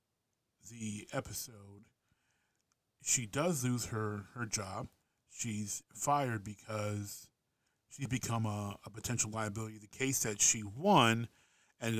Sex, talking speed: male, 115 wpm